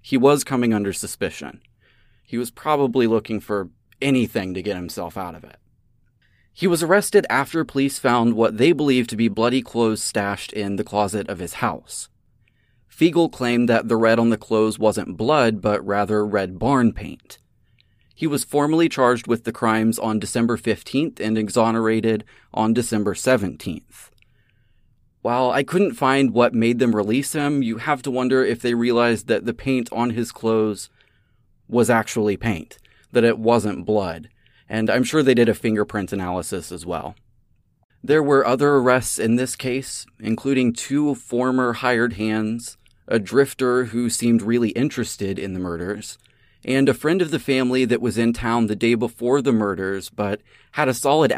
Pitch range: 105-125 Hz